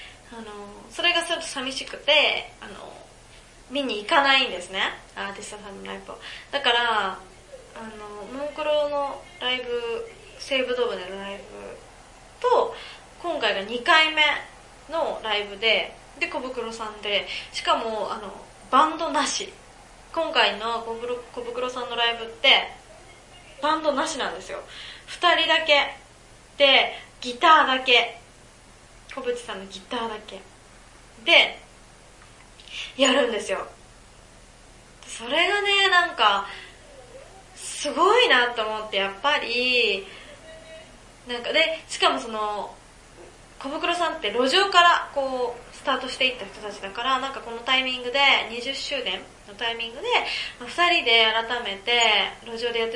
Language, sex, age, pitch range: Japanese, female, 20-39, 225-305 Hz